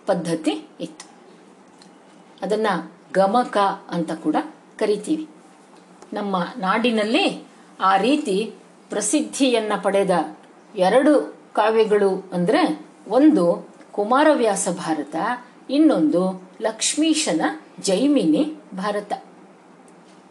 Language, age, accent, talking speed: Kannada, 50-69, native, 70 wpm